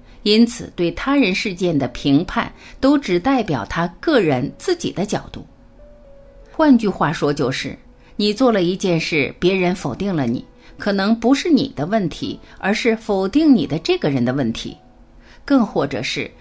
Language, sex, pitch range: Chinese, female, 145-240 Hz